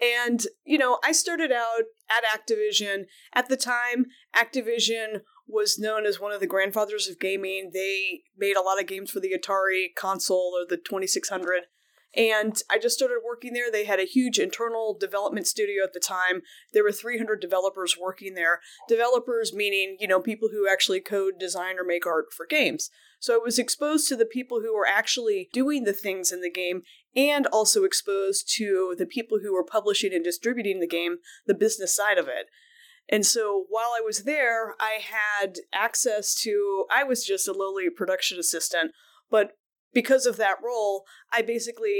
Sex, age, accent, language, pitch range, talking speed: female, 20-39, American, English, 190-240 Hz, 185 wpm